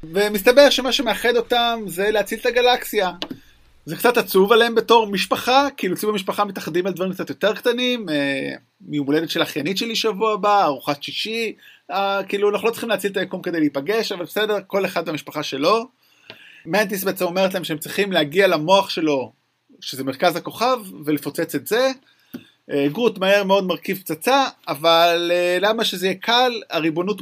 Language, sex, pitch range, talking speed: Hebrew, male, 160-220 Hz, 170 wpm